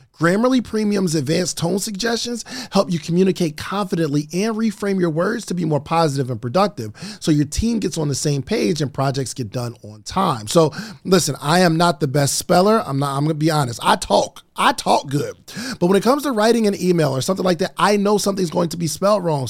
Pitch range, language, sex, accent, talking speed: 150-220 Hz, English, male, American, 220 wpm